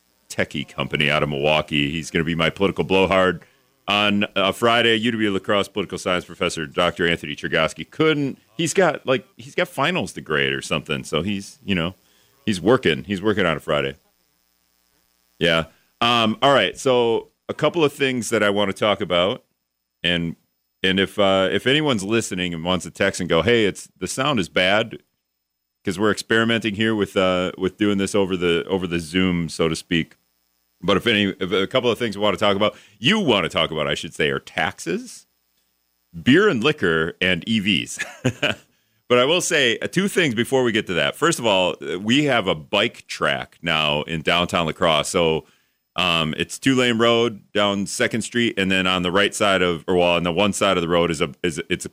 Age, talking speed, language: 40-59, 205 wpm, English